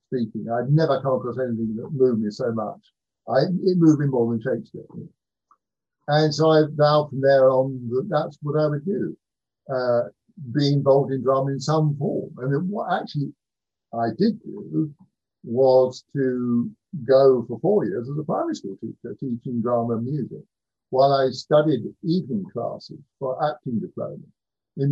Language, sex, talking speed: English, male, 160 wpm